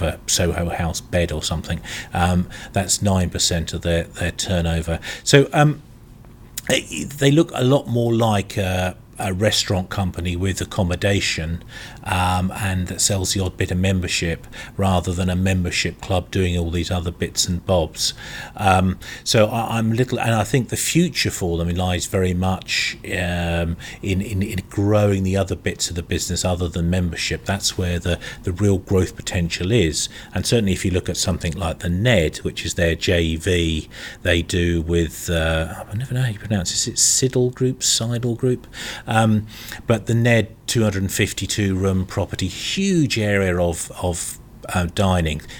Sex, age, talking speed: male, 40-59, 170 wpm